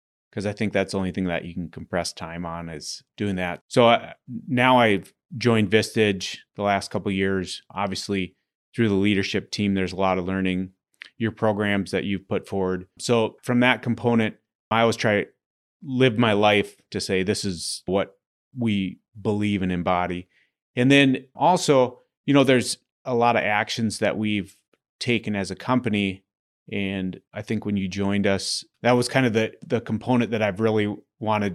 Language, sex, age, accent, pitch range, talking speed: English, male, 30-49, American, 95-110 Hz, 185 wpm